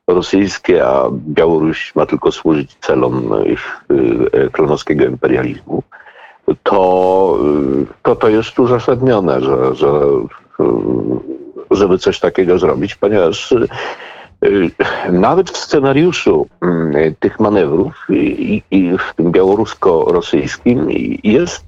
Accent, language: native, Polish